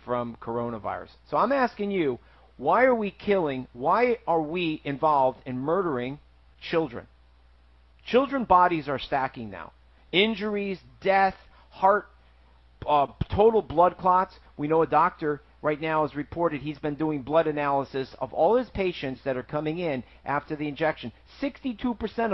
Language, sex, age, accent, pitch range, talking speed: English, male, 50-69, American, 135-185 Hz, 145 wpm